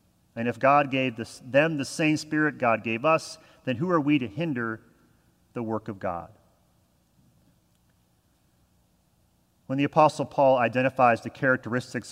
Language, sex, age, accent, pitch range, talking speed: English, male, 40-59, American, 115-145 Hz, 140 wpm